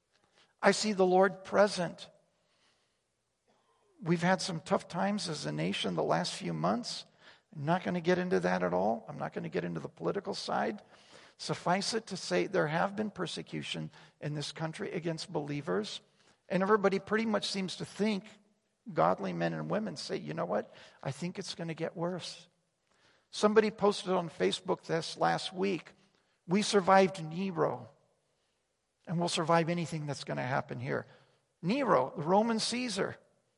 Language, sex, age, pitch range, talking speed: English, male, 50-69, 155-195 Hz, 165 wpm